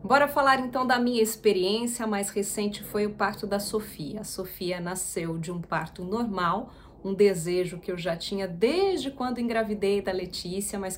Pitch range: 190-240 Hz